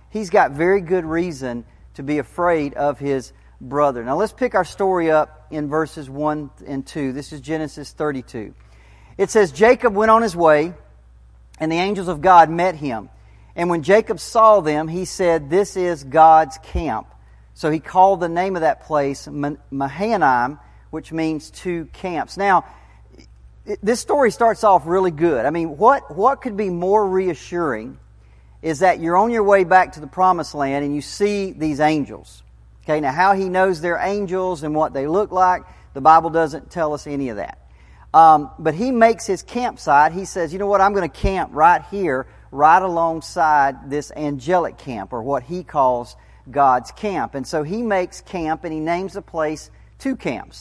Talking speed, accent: 185 wpm, American